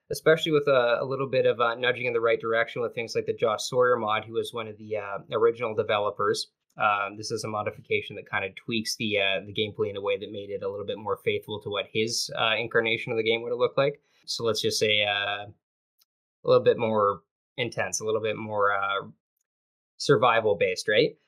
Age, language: 20-39, English